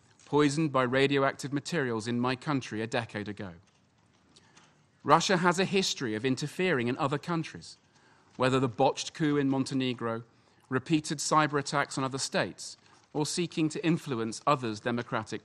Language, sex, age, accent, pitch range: Chinese, male, 40-59, British, 115-160 Hz